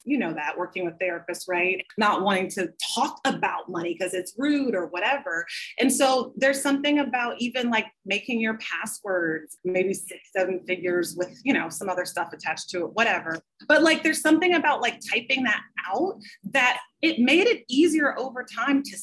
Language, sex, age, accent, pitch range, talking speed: English, female, 30-49, American, 185-270 Hz, 185 wpm